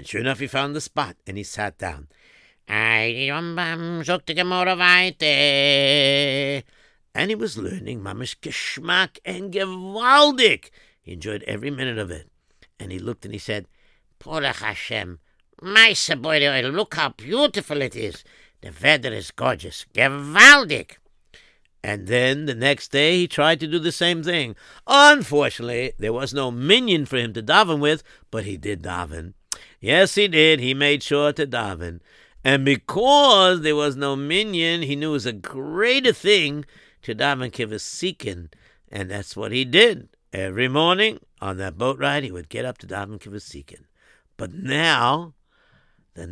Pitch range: 105-165 Hz